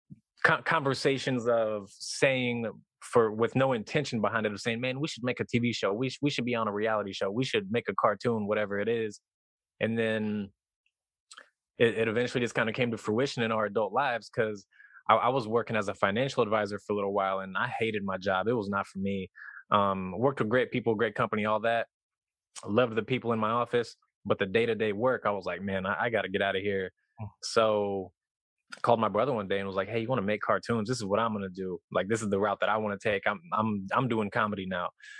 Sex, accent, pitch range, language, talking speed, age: male, American, 100-125 Hz, English, 240 wpm, 20-39